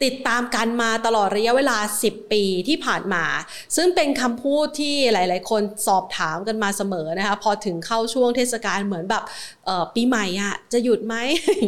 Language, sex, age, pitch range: Thai, female, 30-49, 205-255 Hz